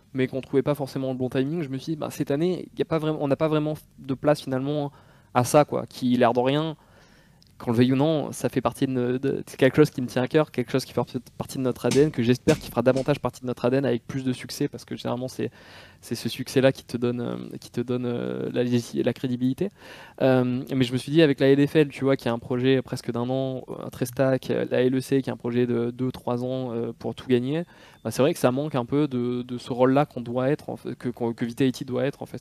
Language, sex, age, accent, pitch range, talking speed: French, male, 20-39, French, 120-135 Hz, 270 wpm